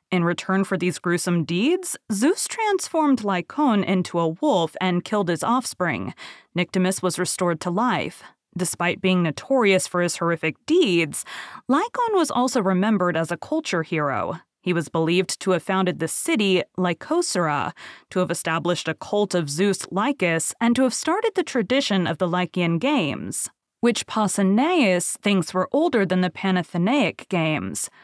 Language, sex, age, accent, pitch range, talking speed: English, female, 30-49, American, 175-260 Hz, 155 wpm